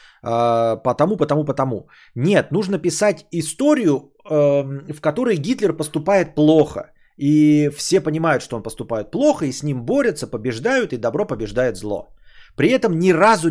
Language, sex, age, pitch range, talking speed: Bulgarian, male, 30-49, 125-170 Hz, 150 wpm